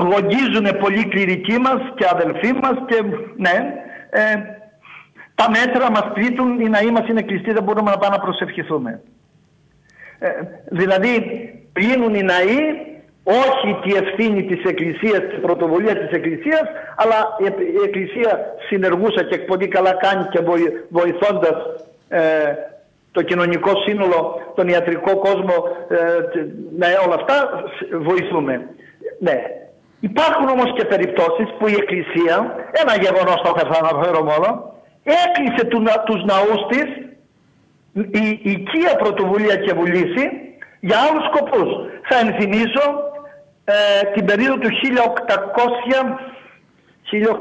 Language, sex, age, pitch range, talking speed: Greek, male, 60-79, 180-240 Hz, 115 wpm